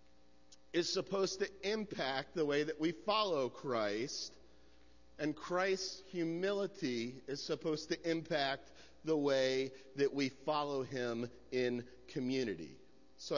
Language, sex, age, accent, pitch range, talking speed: English, male, 50-69, American, 140-200 Hz, 115 wpm